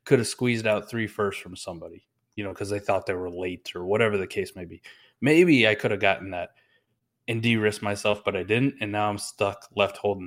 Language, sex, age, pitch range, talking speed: English, male, 20-39, 105-130 Hz, 235 wpm